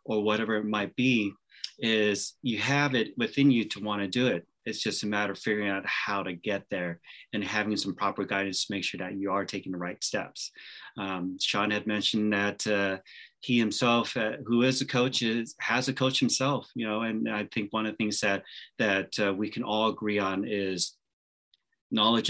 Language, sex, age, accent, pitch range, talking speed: English, male, 30-49, American, 100-125 Hz, 215 wpm